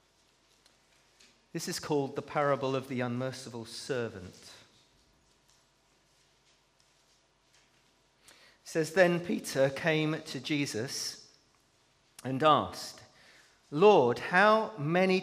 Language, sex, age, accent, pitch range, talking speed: English, male, 40-59, British, 115-155 Hz, 85 wpm